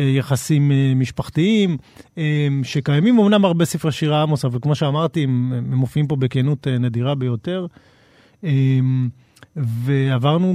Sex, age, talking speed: male, 40-59, 100 wpm